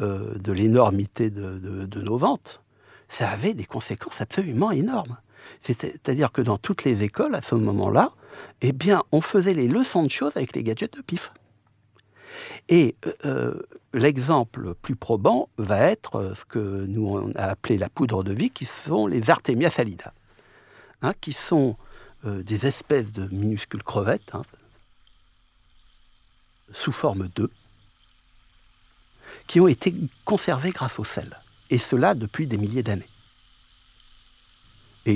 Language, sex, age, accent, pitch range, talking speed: French, male, 60-79, French, 100-130 Hz, 140 wpm